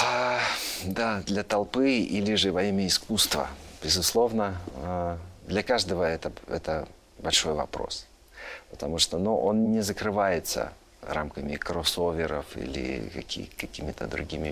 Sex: male